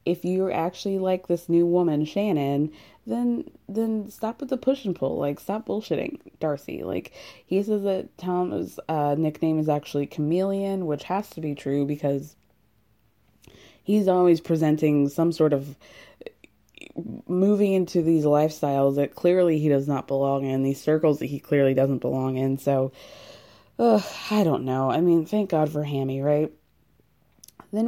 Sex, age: female, 20-39